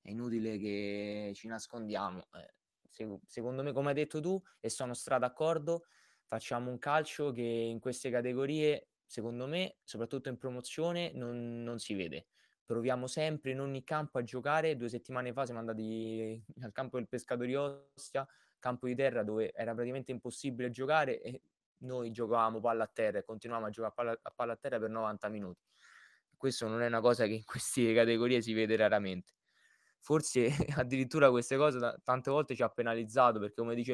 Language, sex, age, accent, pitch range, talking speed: Italian, male, 20-39, native, 115-130 Hz, 175 wpm